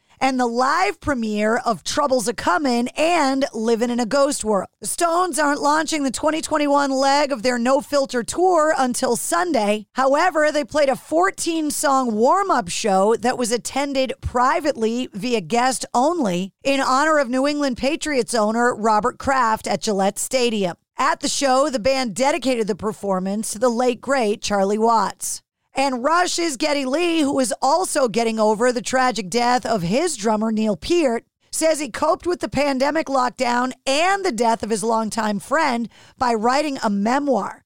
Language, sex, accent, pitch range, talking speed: English, female, American, 235-295 Hz, 165 wpm